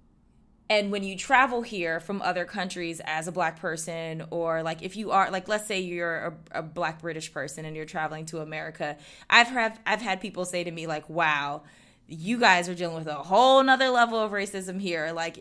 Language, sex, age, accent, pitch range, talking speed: English, female, 20-39, American, 165-200 Hz, 210 wpm